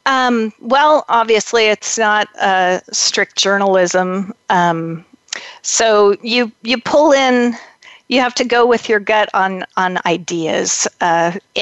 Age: 40-59